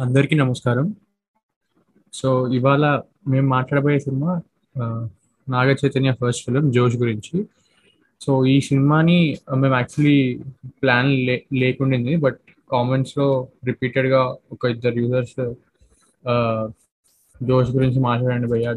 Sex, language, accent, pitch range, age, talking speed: male, Telugu, native, 120-135 Hz, 20-39, 100 wpm